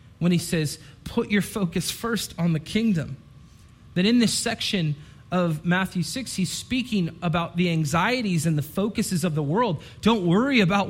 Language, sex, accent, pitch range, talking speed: English, male, American, 135-175 Hz, 170 wpm